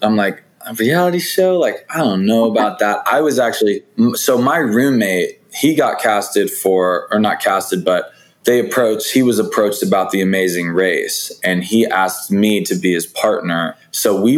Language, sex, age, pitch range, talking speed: English, male, 20-39, 90-110 Hz, 185 wpm